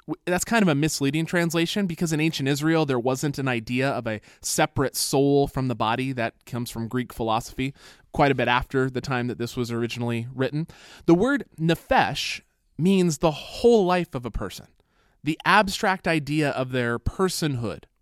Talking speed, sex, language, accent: 175 wpm, male, English, American